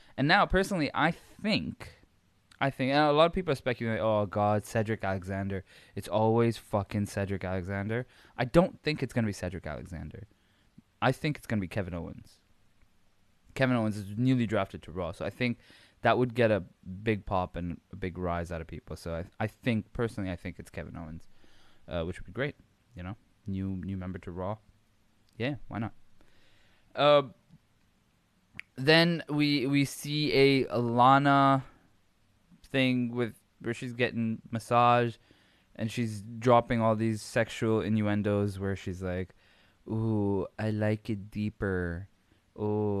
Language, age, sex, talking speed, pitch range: English, 20-39, male, 165 wpm, 95-125 Hz